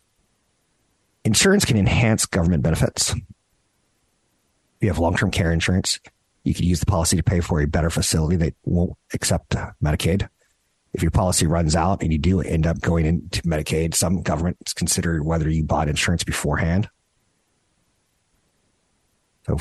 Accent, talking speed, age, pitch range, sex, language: American, 145 wpm, 50-69, 85-105 Hz, male, English